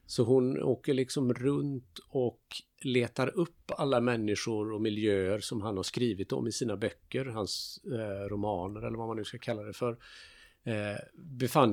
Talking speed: 170 wpm